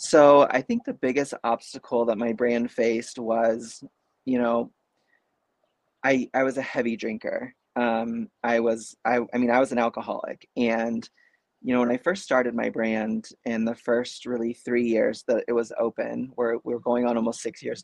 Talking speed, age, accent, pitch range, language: 185 wpm, 30-49, American, 115-130 Hz, English